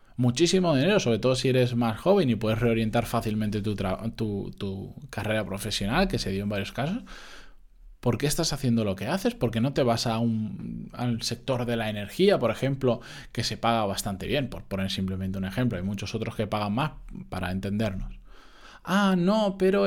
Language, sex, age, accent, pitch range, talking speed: Spanish, male, 20-39, Spanish, 110-145 Hz, 200 wpm